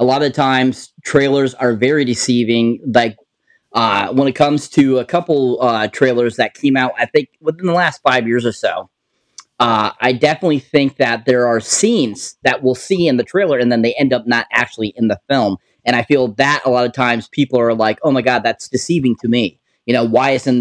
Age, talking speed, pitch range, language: 20-39, 220 wpm, 120-145 Hz, English